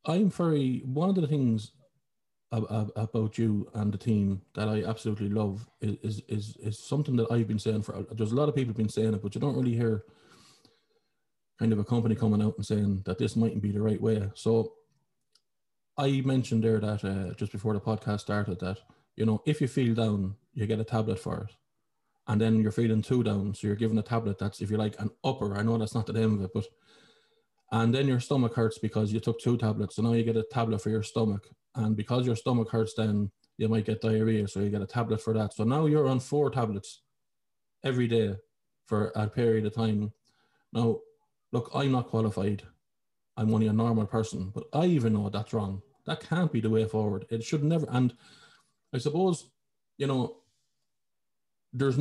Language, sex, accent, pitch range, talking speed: English, male, Irish, 105-125 Hz, 210 wpm